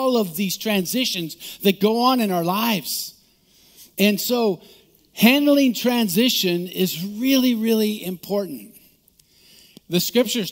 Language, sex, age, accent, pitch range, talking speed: English, male, 50-69, American, 170-230 Hz, 115 wpm